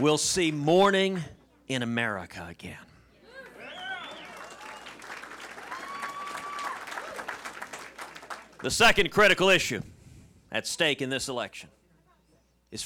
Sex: male